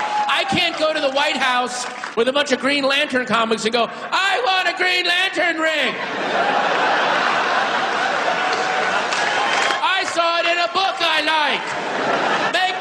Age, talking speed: 40-59, 145 wpm